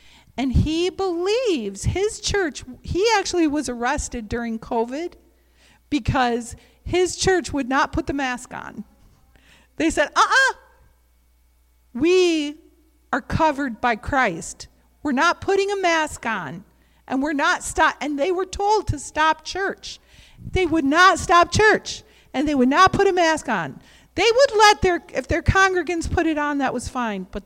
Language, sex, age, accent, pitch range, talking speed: English, female, 50-69, American, 190-315 Hz, 160 wpm